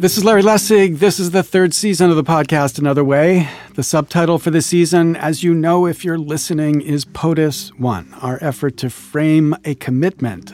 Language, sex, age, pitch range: English, male, 40-59, 135-165 Hz